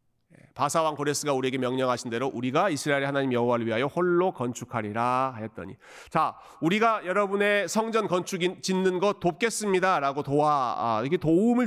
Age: 40-59